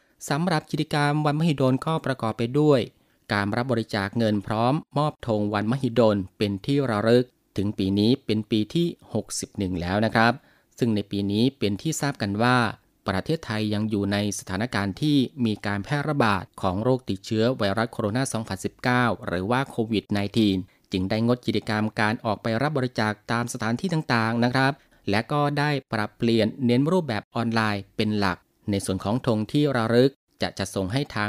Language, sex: Thai, male